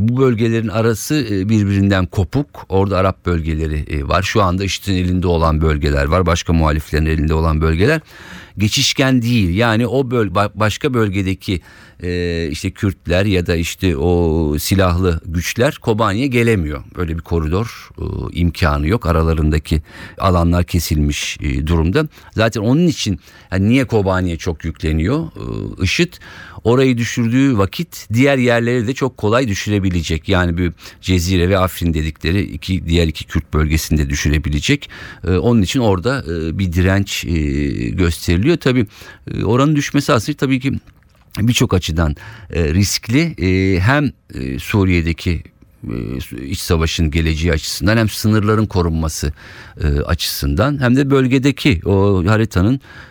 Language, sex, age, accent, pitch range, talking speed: Turkish, male, 50-69, native, 85-115 Hz, 130 wpm